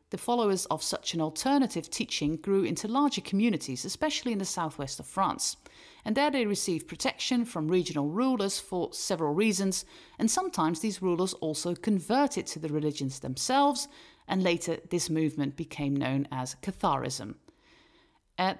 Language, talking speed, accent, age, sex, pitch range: English, 150 wpm, British, 40-59, female, 155-235 Hz